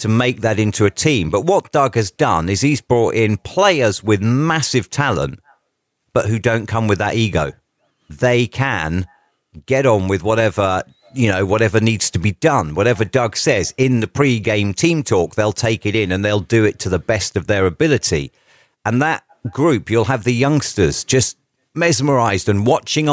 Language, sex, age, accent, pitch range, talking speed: English, male, 40-59, British, 105-130 Hz, 185 wpm